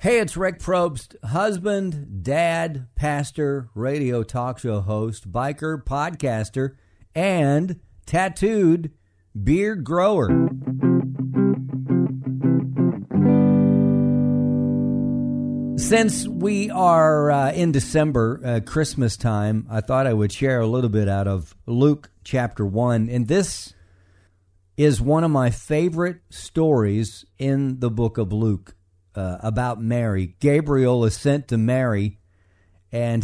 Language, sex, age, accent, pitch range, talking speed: English, male, 50-69, American, 100-140 Hz, 110 wpm